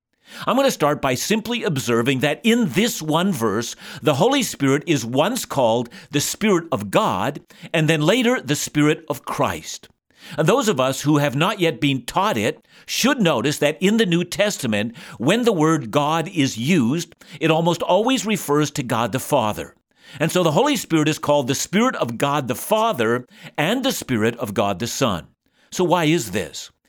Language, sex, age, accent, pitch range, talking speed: English, male, 50-69, American, 140-195 Hz, 185 wpm